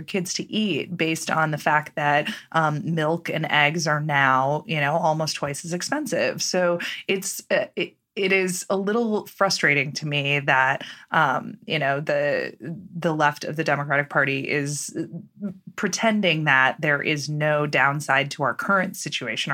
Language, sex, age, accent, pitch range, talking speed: English, female, 20-39, American, 145-185 Hz, 165 wpm